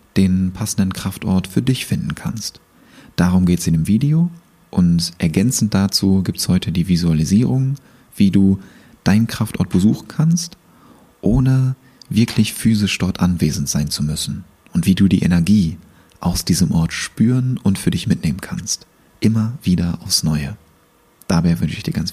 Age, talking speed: 30-49, 155 wpm